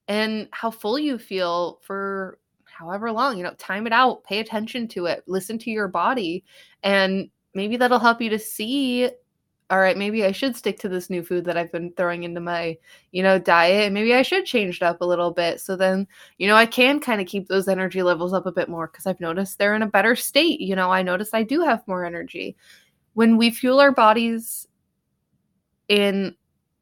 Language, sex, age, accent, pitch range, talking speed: English, female, 20-39, American, 185-225 Hz, 215 wpm